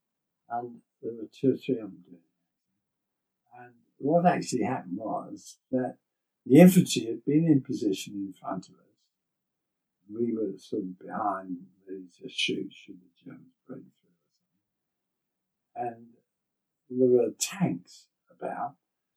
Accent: British